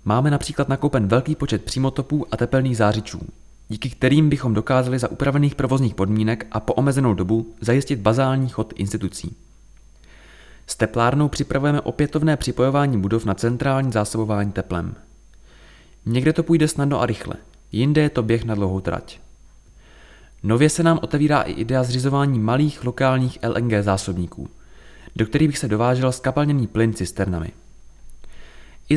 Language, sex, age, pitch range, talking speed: Czech, male, 20-39, 100-135 Hz, 140 wpm